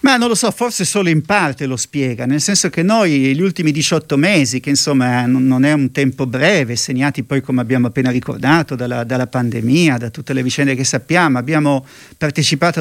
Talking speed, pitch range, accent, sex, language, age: 195 wpm, 130-155 Hz, native, male, Italian, 50-69